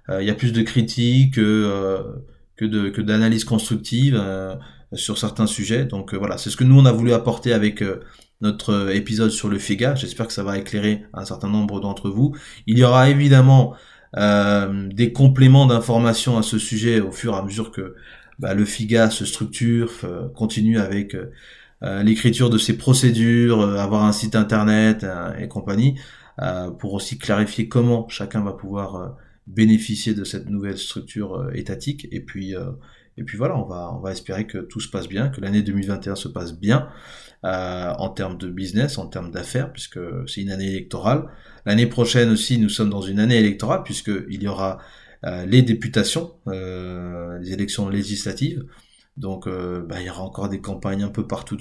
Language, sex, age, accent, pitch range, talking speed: French, male, 20-39, French, 100-120 Hz, 190 wpm